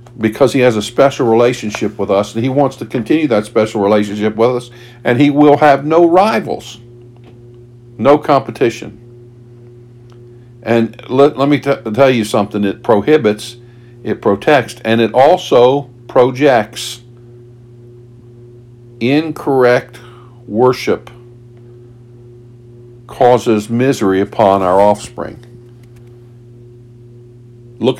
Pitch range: 115-125 Hz